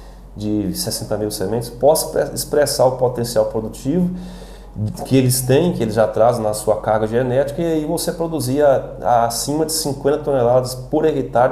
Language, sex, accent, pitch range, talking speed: Portuguese, male, Brazilian, 110-140 Hz, 150 wpm